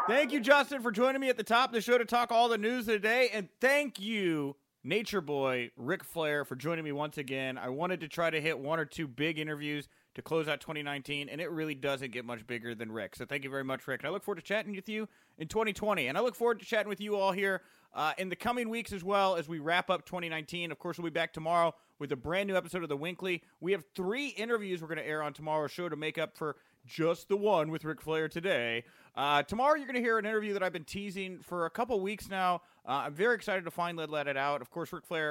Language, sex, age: English, male, 30-49